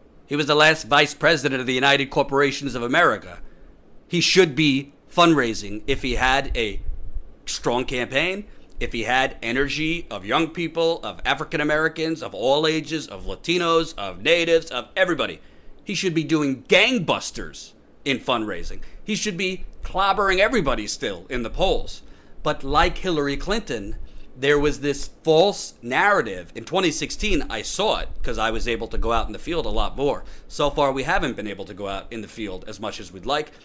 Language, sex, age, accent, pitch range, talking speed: English, male, 40-59, American, 105-155 Hz, 180 wpm